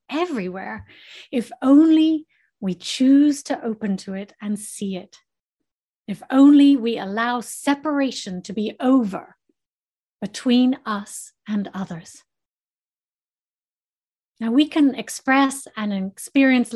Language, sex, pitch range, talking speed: English, female, 205-270 Hz, 105 wpm